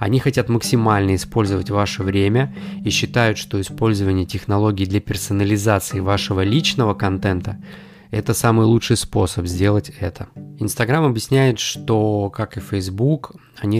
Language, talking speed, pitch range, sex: Russian, 130 wpm, 100-120 Hz, male